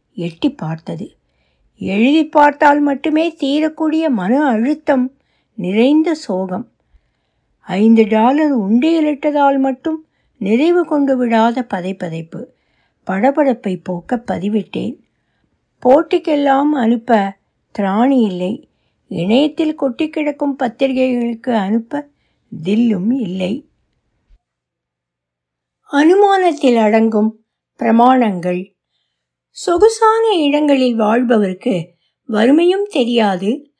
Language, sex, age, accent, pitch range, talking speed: Tamil, female, 60-79, native, 215-300 Hz, 65 wpm